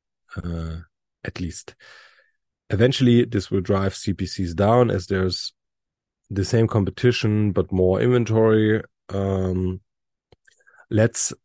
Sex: male